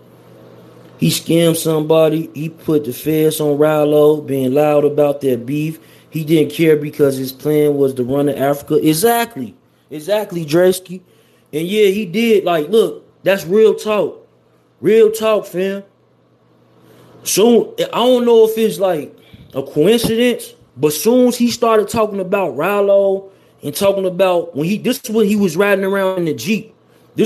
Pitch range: 150-210 Hz